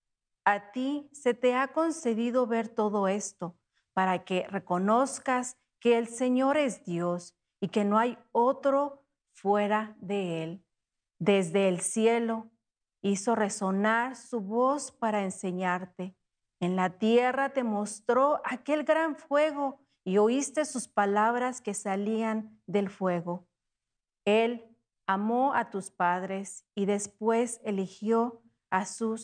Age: 40-59